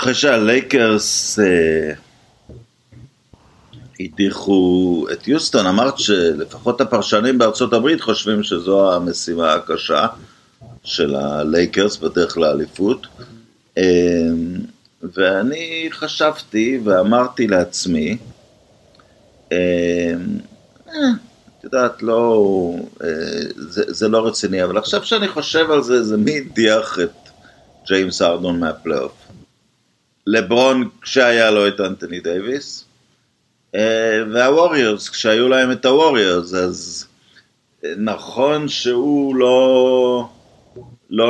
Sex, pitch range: male, 95-125 Hz